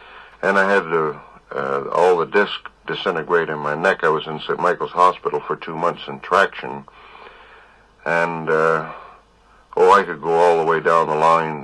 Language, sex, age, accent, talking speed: English, male, 60-79, American, 180 wpm